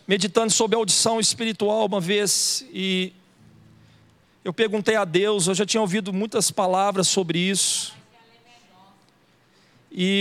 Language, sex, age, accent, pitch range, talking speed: Portuguese, male, 40-59, Brazilian, 190-250 Hz, 125 wpm